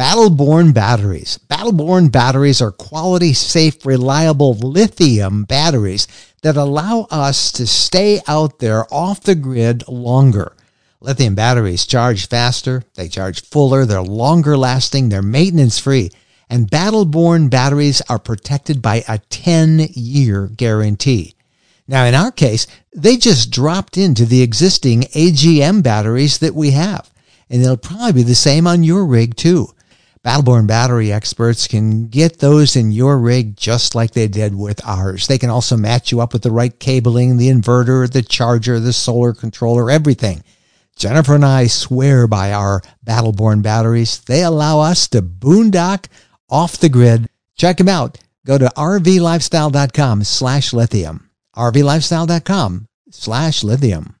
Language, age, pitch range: English, 50-69, 115-155 Hz